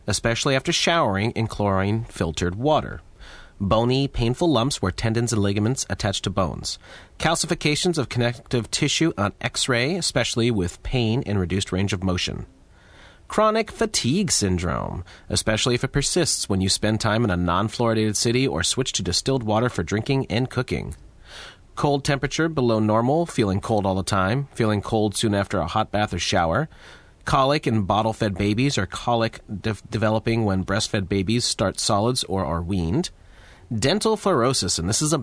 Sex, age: male, 30-49